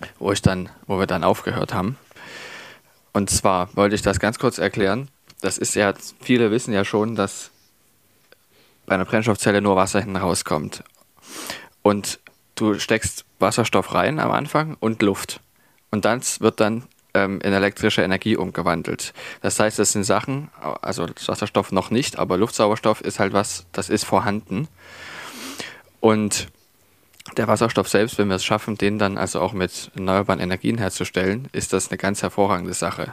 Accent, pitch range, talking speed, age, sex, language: German, 95-105 Hz, 160 wpm, 20-39, male, German